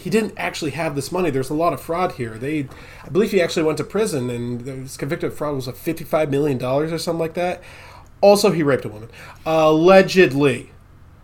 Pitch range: 125-165 Hz